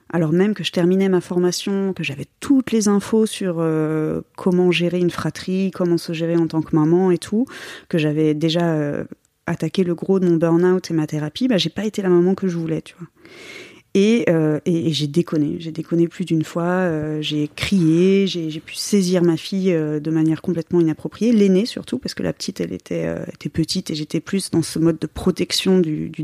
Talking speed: 220 wpm